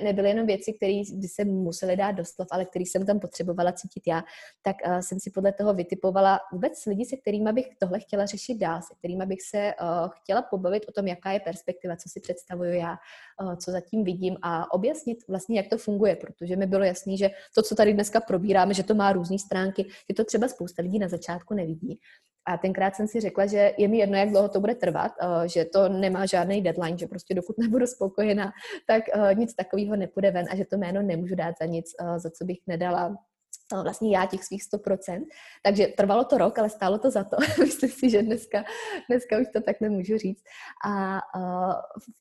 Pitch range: 180-210 Hz